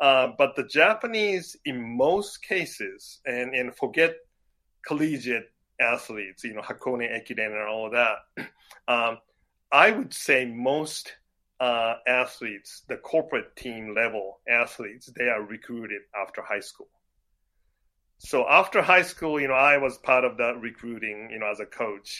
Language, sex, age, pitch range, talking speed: English, male, 30-49, 110-140 Hz, 150 wpm